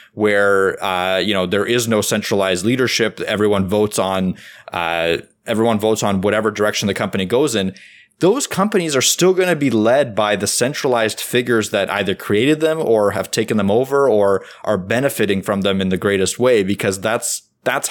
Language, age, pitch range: English, 20-39, 100-125 Hz